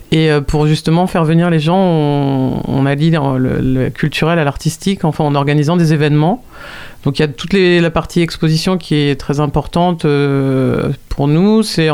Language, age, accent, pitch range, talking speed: French, 40-59, French, 145-170 Hz, 175 wpm